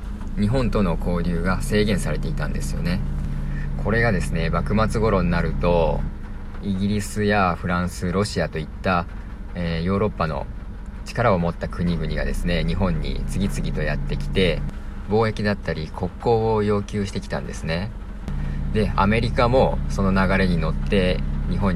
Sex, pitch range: male, 80-100 Hz